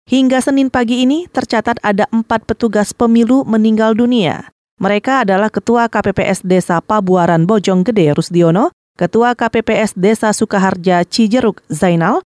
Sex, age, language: female, 30-49, Indonesian